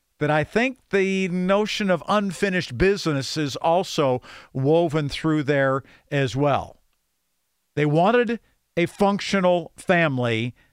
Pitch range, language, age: 130-175 Hz, English, 50-69